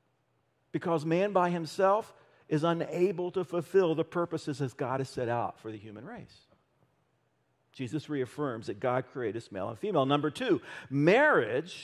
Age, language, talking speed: 50-69, English, 150 wpm